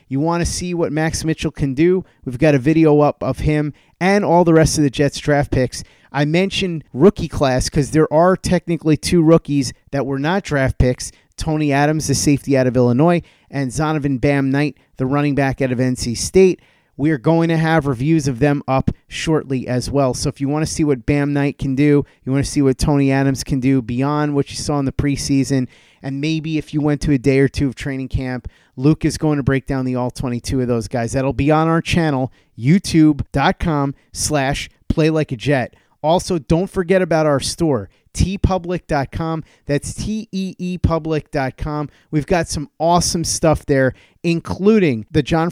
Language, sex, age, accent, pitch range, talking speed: English, male, 30-49, American, 135-160 Hz, 195 wpm